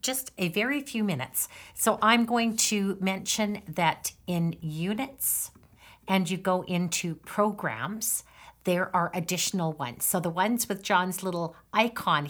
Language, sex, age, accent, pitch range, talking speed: English, female, 50-69, American, 165-205 Hz, 140 wpm